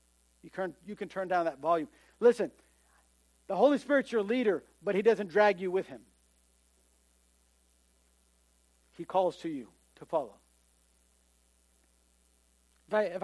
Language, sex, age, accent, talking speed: English, male, 50-69, American, 120 wpm